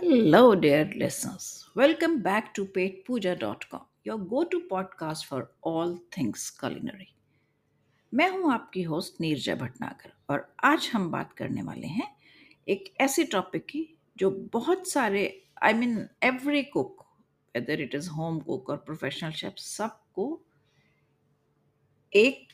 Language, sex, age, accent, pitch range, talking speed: Hindi, female, 50-69, native, 175-280 Hz, 140 wpm